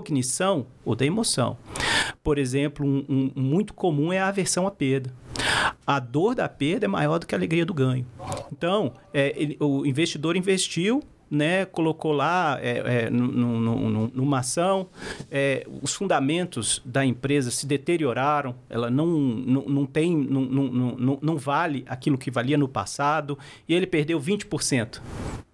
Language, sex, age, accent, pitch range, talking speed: Portuguese, male, 50-69, Brazilian, 130-175 Hz, 165 wpm